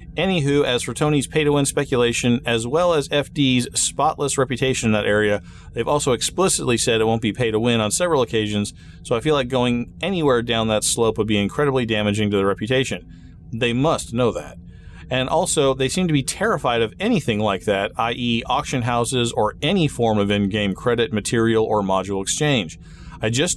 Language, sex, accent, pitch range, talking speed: English, male, American, 105-145 Hz, 185 wpm